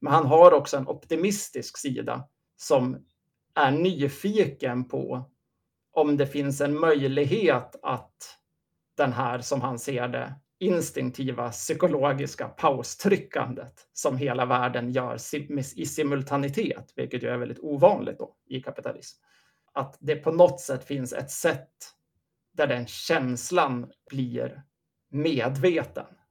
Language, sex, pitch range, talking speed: Swedish, male, 125-155 Hz, 120 wpm